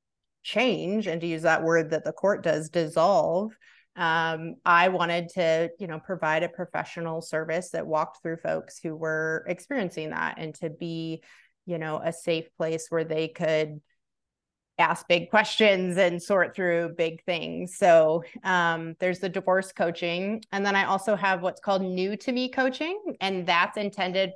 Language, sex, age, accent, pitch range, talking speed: English, female, 30-49, American, 165-195 Hz, 170 wpm